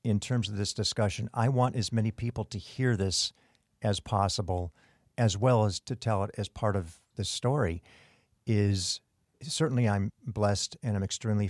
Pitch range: 95-115 Hz